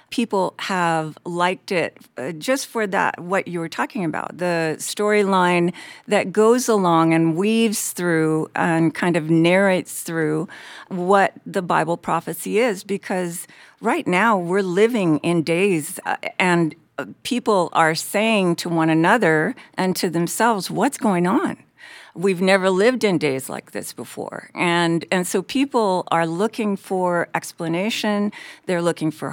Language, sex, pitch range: English, female, 165-210 Hz